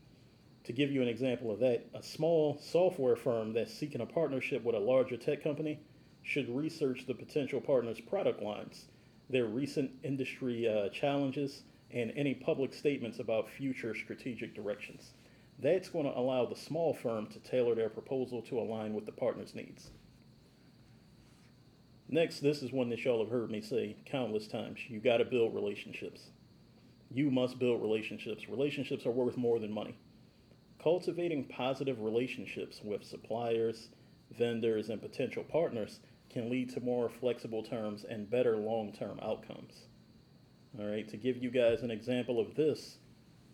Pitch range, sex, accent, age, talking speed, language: 115-140 Hz, male, American, 40-59, 155 wpm, English